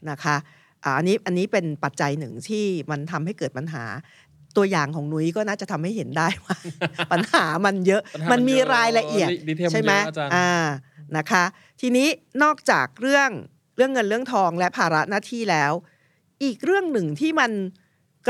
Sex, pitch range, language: female, 155-215 Hz, Thai